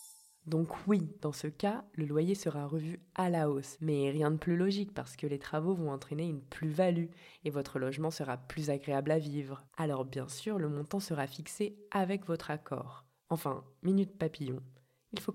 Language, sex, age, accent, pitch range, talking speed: French, female, 20-39, French, 150-205 Hz, 190 wpm